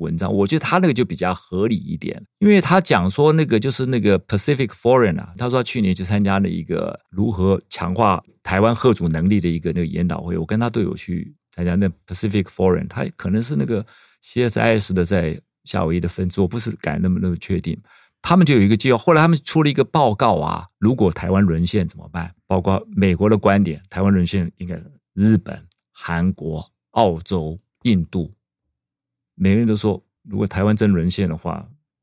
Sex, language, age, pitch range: male, Chinese, 50-69, 90-135 Hz